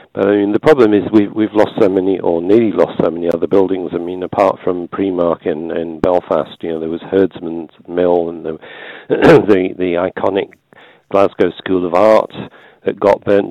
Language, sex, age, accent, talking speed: English, male, 50-69, British, 195 wpm